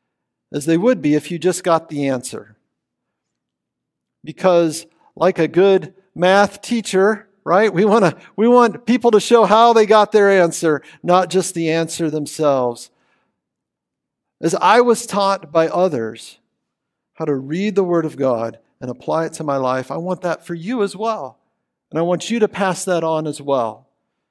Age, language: 50-69, English